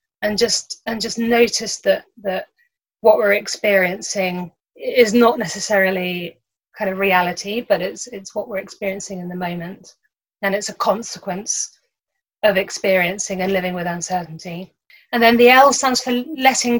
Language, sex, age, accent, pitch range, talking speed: English, female, 30-49, British, 185-225 Hz, 150 wpm